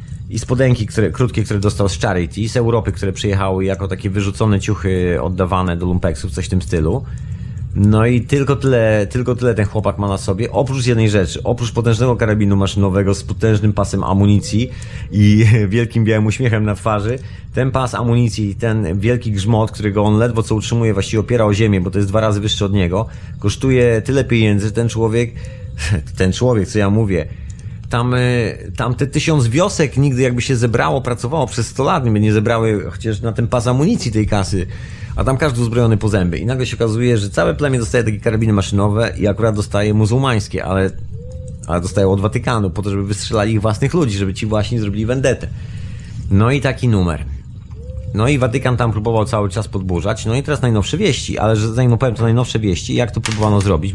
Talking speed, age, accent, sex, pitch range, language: 190 wpm, 30-49, native, male, 100-120 Hz, Polish